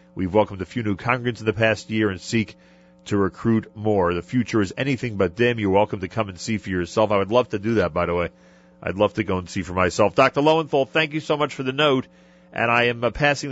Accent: American